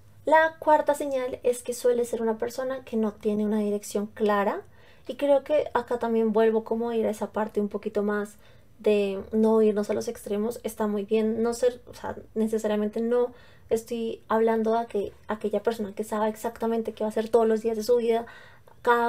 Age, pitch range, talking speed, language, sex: 20-39, 210-240 Hz, 210 wpm, Spanish, female